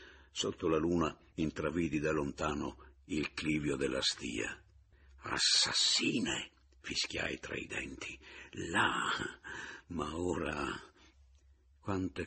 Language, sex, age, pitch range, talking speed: Italian, male, 60-79, 75-95 Hz, 95 wpm